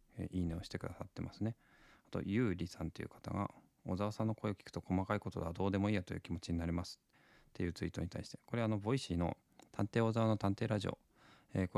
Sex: male